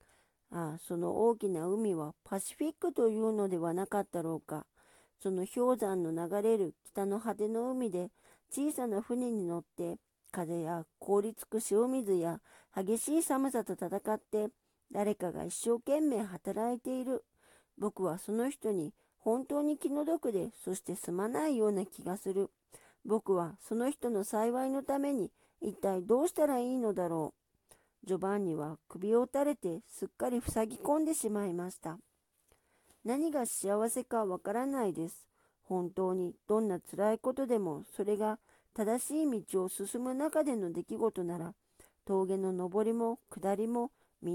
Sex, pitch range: female, 185-245 Hz